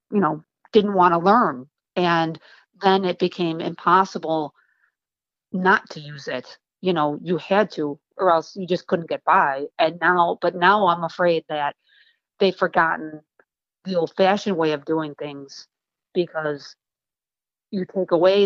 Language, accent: English, American